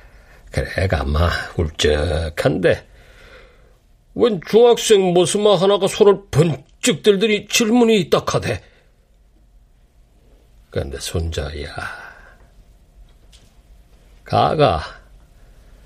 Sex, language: male, Korean